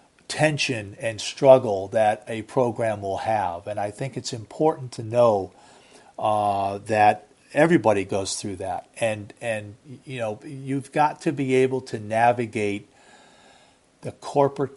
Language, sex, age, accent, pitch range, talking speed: English, male, 40-59, American, 105-130 Hz, 140 wpm